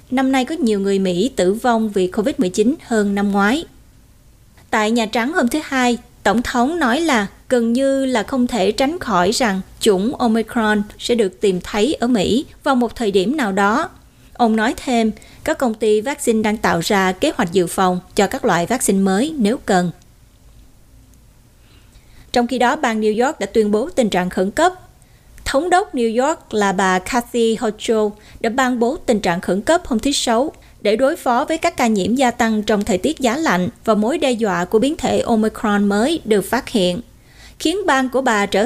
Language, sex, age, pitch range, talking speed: Vietnamese, female, 20-39, 205-265 Hz, 200 wpm